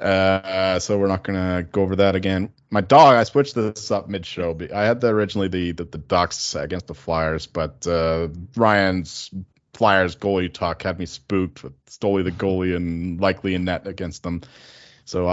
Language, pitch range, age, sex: English, 85-100 Hz, 30-49, male